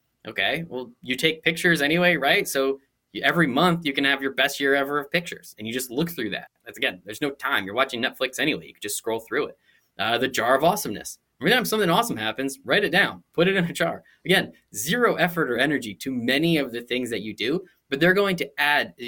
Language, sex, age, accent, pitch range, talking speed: English, male, 10-29, American, 125-170 Hz, 240 wpm